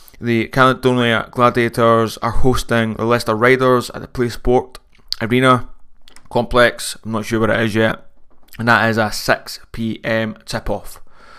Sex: male